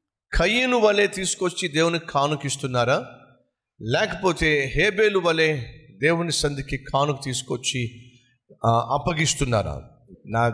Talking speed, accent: 80 wpm, native